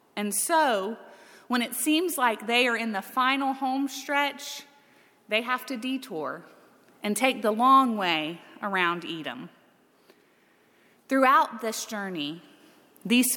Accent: American